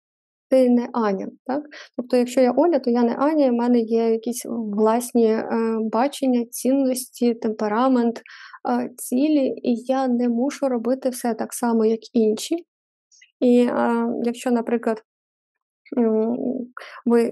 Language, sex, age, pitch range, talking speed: Ukrainian, female, 20-39, 230-265 Hz, 120 wpm